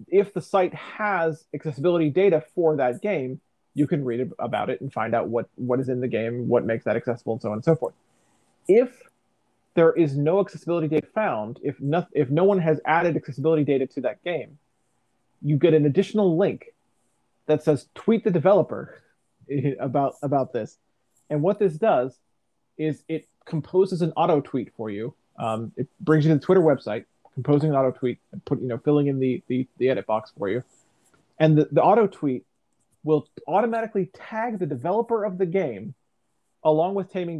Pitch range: 130-175 Hz